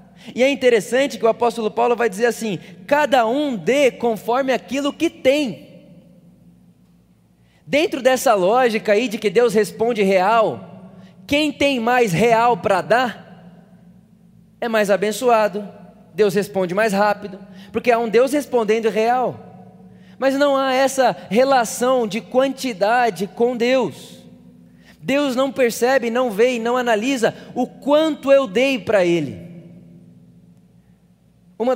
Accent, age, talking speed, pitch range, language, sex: Brazilian, 20-39, 130 wpm, 195-250 Hz, Portuguese, male